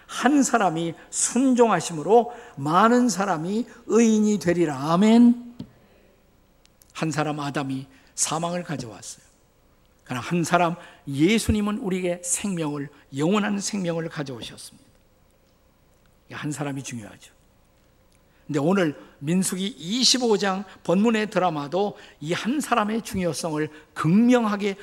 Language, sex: Korean, male